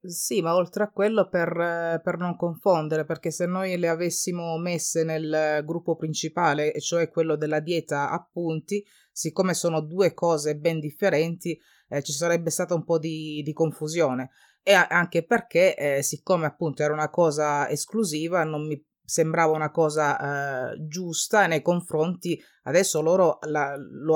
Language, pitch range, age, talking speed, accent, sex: Italian, 155-175 Hz, 30-49, 155 wpm, native, female